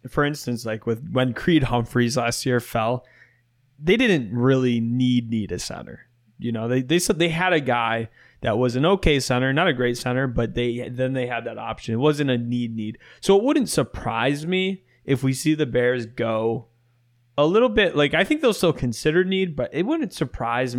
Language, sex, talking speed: English, male, 210 wpm